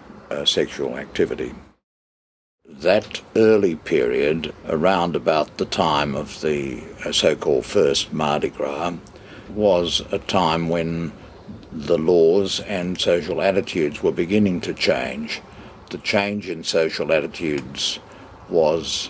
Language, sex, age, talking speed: English, male, 60-79, 105 wpm